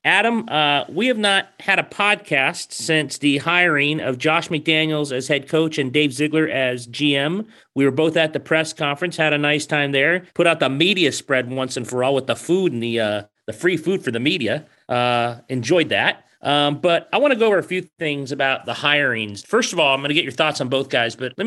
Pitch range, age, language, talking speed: 125-155 Hz, 40-59, English, 240 wpm